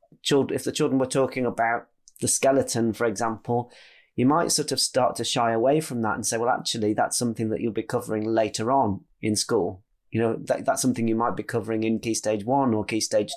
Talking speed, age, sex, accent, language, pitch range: 220 wpm, 30-49, male, British, English, 115-140 Hz